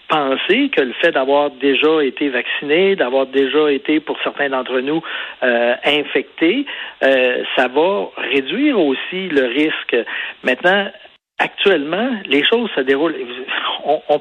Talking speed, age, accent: 135 wpm, 50-69, Canadian